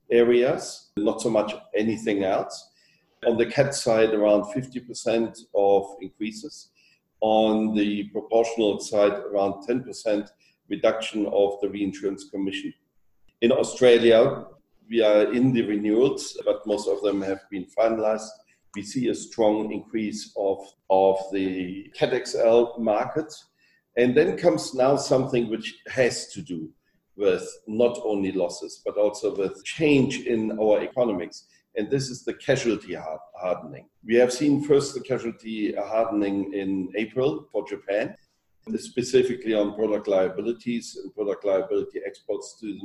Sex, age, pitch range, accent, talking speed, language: male, 40-59, 105-150 Hz, German, 135 wpm, English